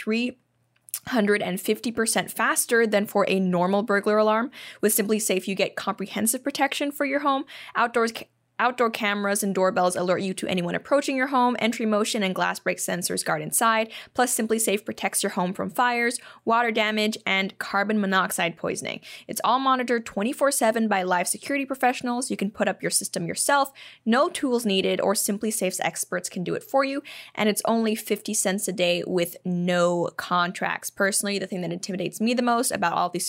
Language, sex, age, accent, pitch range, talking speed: English, female, 10-29, American, 190-240 Hz, 180 wpm